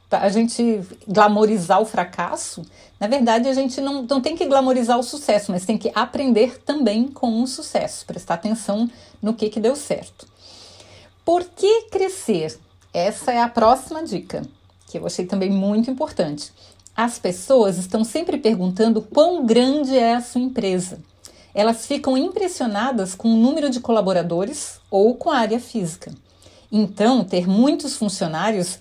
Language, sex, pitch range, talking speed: Portuguese, female, 195-275 Hz, 150 wpm